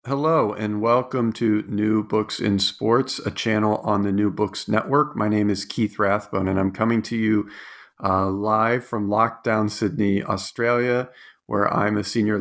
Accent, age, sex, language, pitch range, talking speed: American, 40-59, male, English, 105-120 Hz, 170 wpm